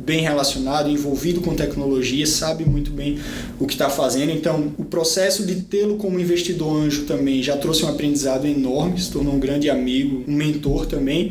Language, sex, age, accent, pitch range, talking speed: Portuguese, male, 20-39, Brazilian, 150-190 Hz, 180 wpm